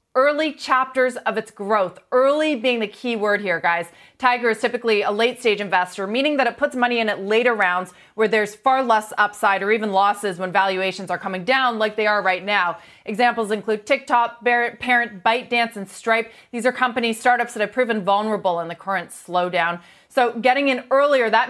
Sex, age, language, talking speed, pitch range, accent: female, 30-49, English, 200 wpm, 205-255 Hz, American